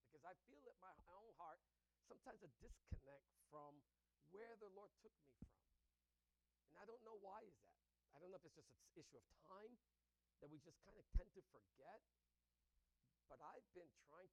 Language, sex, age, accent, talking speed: English, male, 50-69, American, 195 wpm